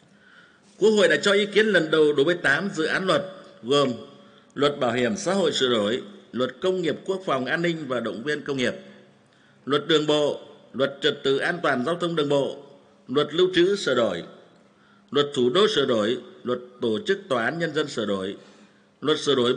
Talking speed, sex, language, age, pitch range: 210 wpm, male, Vietnamese, 50-69, 140-190 Hz